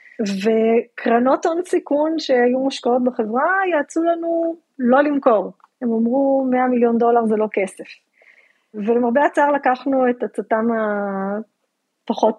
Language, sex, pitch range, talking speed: Hebrew, female, 225-285 Hz, 115 wpm